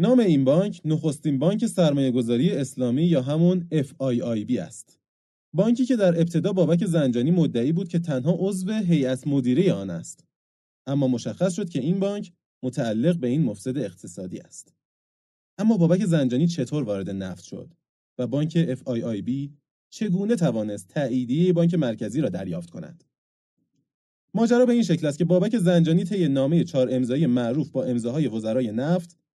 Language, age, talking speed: Persian, 30-49, 150 wpm